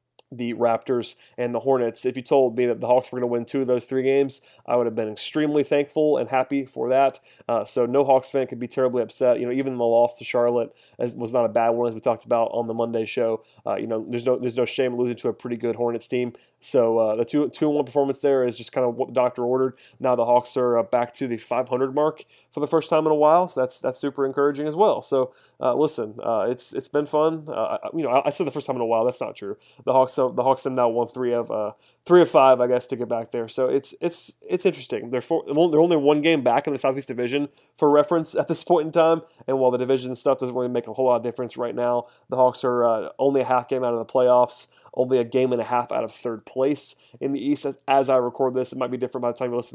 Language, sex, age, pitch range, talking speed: English, male, 30-49, 120-135 Hz, 285 wpm